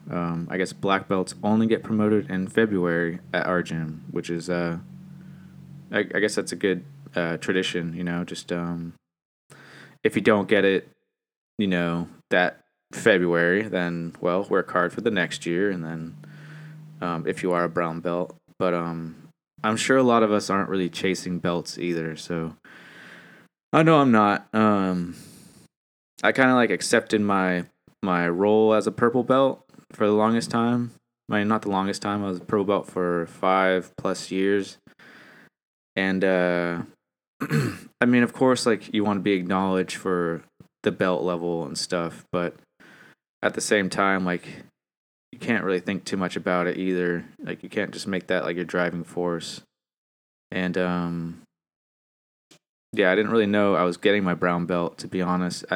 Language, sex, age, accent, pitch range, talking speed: English, male, 20-39, American, 85-105 Hz, 175 wpm